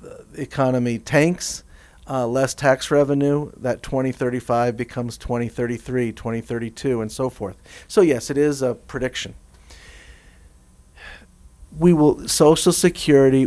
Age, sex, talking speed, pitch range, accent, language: 50-69, male, 110 wpm, 115-140 Hz, American, English